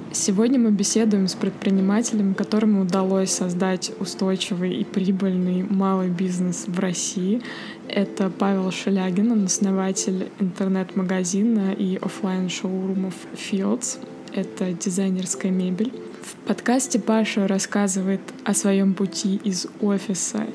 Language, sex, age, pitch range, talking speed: Russian, female, 20-39, 190-210 Hz, 100 wpm